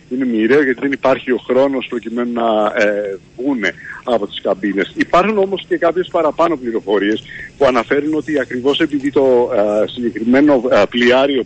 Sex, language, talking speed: male, Greek, 140 wpm